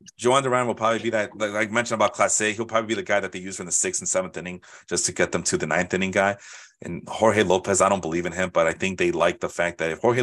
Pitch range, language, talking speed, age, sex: 95-120 Hz, English, 310 wpm, 30-49, male